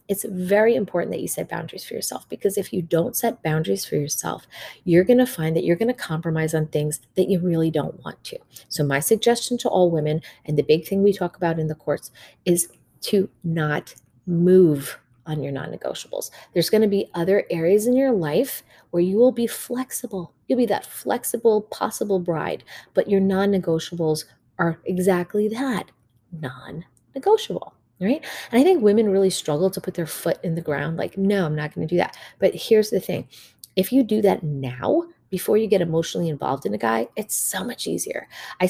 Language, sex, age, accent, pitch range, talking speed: English, female, 30-49, American, 155-205 Hz, 200 wpm